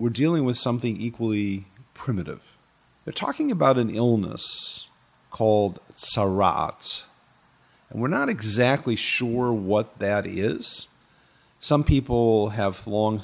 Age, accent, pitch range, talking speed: 40-59, American, 100-130 Hz, 115 wpm